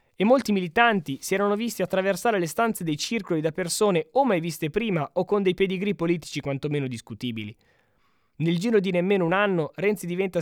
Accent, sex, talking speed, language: native, male, 185 wpm, Italian